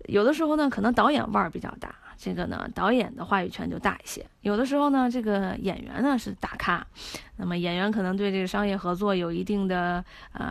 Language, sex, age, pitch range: Chinese, female, 20-39, 190-235 Hz